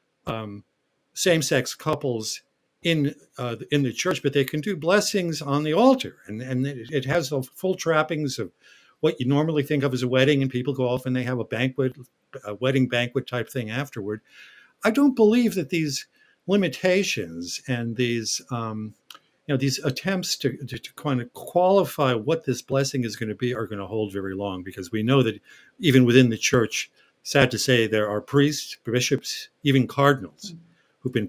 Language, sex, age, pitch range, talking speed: English, male, 50-69, 110-150 Hz, 190 wpm